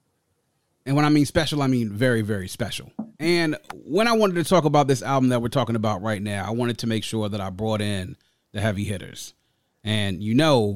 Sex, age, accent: male, 30-49, American